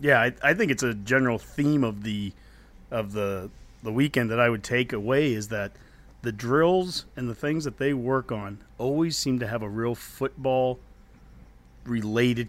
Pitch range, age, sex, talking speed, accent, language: 110-130 Hz, 40-59, male, 180 wpm, American, English